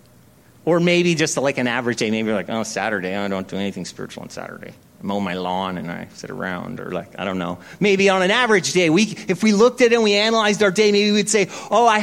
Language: English